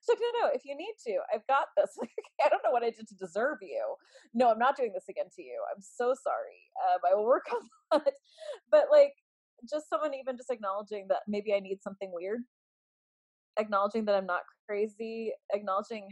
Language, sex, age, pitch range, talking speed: English, female, 20-39, 210-295 Hz, 215 wpm